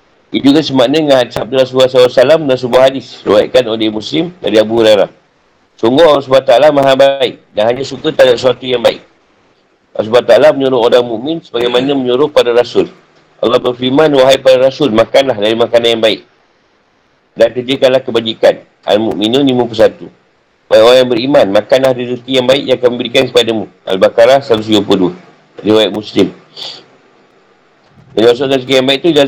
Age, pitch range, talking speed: 50-69, 120-140 Hz, 160 wpm